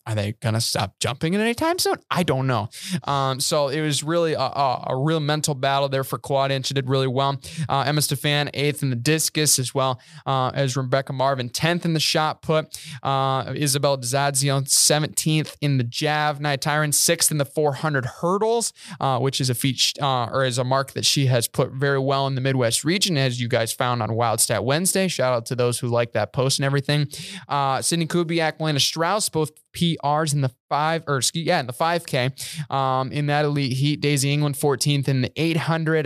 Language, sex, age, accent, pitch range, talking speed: English, male, 20-39, American, 135-160 Hz, 210 wpm